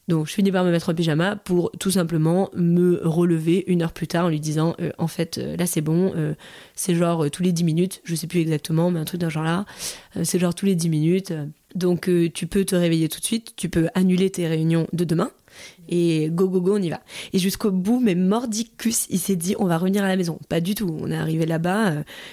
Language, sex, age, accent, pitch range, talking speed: French, female, 20-39, French, 165-190 Hz, 260 wpm